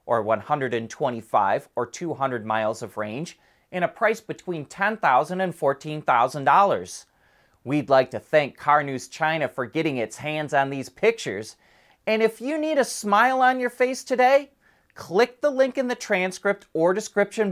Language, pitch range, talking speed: English, 140-215 Hz, 160 wpm